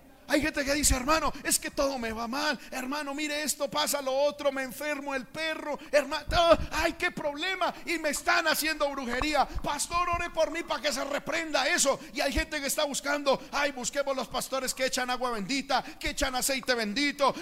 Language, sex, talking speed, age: Spanish, male, 195 wpm, 50-69